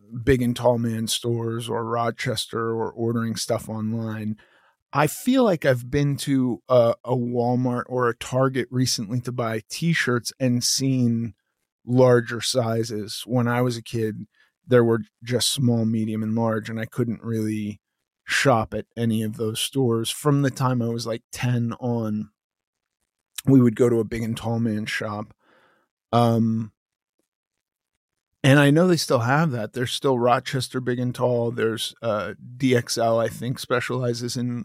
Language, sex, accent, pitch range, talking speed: English, male, American, 115-125 Hz, 160 wpm